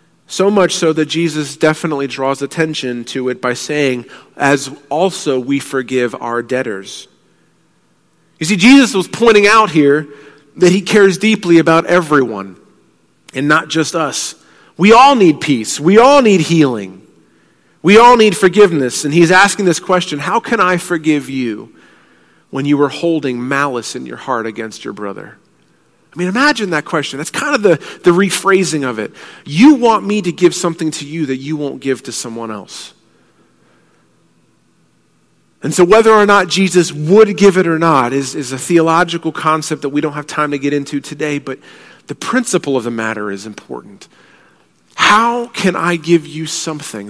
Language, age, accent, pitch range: English, 40-59, American, 135-180 Hz